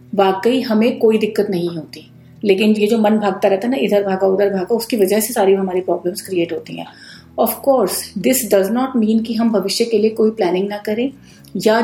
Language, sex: Hindi, female